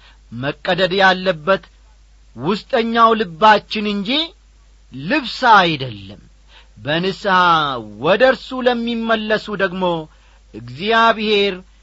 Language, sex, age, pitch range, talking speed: Amharic, male, 50-69, 130-215 Hz, 60 wpm